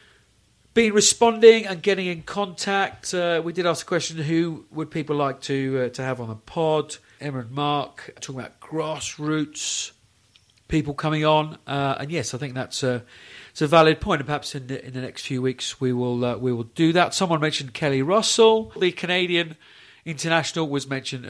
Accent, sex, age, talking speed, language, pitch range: British, male, 40-59, 190 wpm, English, 125-165 Hz